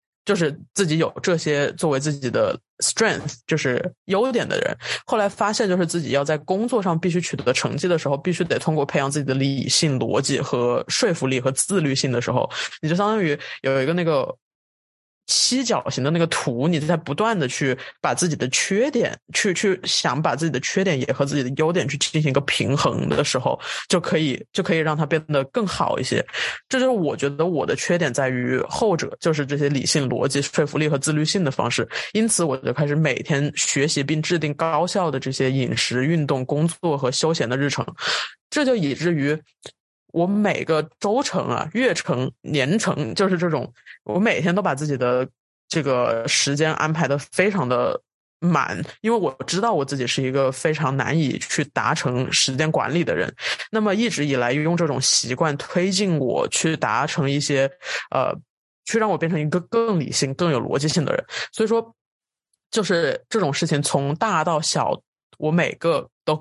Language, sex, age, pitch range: Chinese, male, 20-39, 140-180 Hz